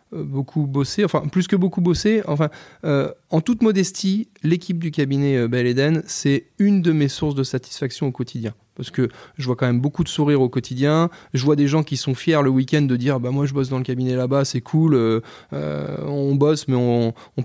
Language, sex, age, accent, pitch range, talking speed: French, male, 20-39, French, 130-160 Hz, 225 wpm